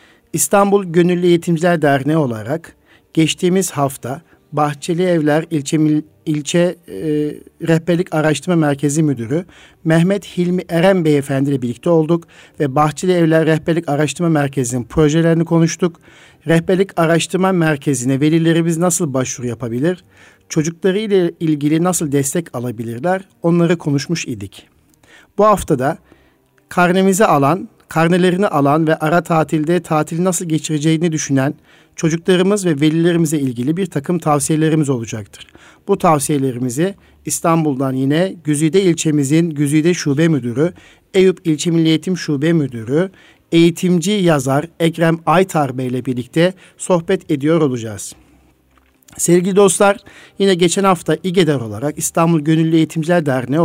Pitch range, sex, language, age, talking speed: 145-175 Hz, male, Turkish, 50-69, 115 wpm